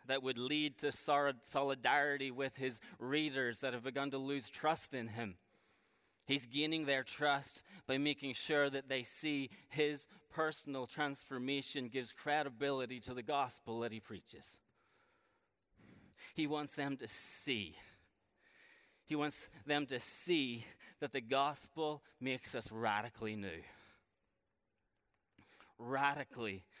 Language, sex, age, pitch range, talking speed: English, male, 20-39, 115-140 Hz, 125 wpm